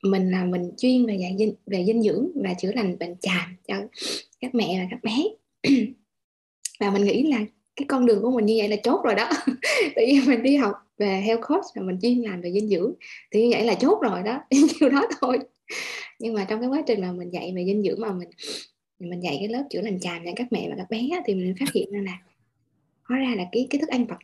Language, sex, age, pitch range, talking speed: Vietnamese, female, 20-39, 195-260 Hz, 255 wpm